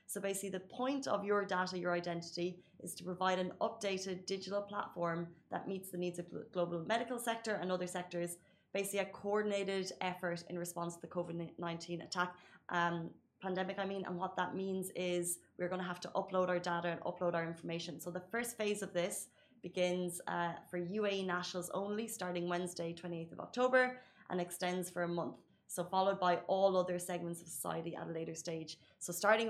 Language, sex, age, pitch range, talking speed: Arabic, female, 20-39, 175-195 Hz, 195 wpm